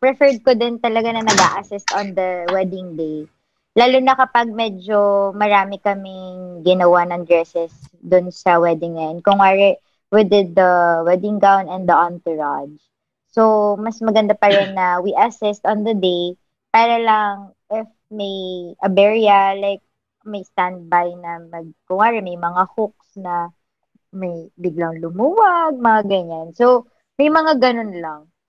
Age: 20-39